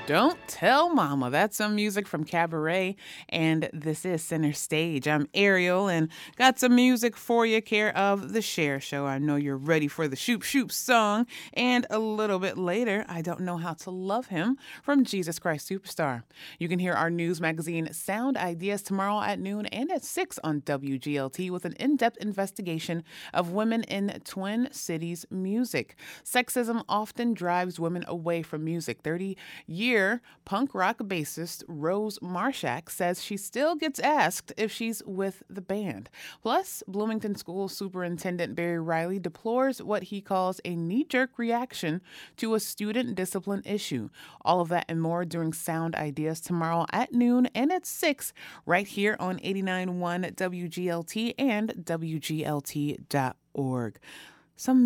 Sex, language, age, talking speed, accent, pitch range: female, English, 30-49, 155 wpm, American, 165-215 Hz